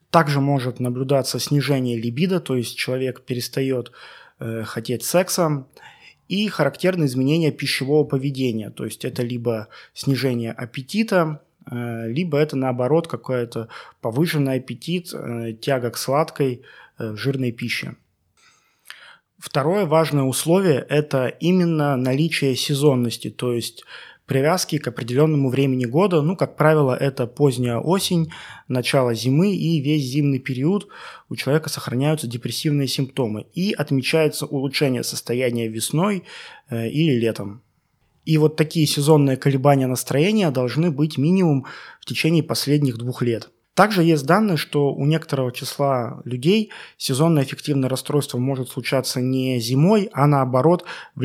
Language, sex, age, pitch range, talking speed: Russian, male, 20-39, 125-155 Hz, 130 wpm